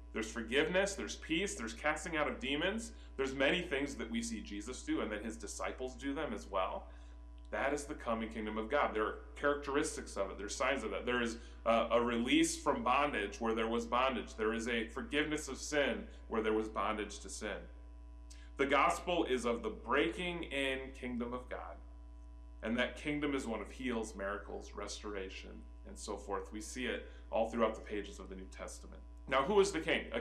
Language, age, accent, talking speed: English, 30-49, American, 205 wpm